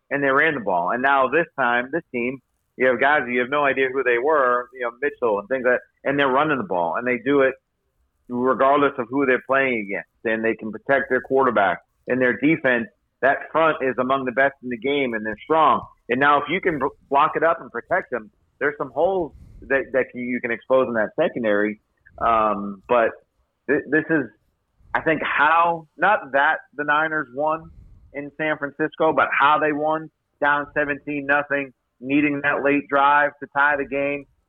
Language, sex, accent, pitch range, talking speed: English, male, American, 125-145 Hz, 205 wpm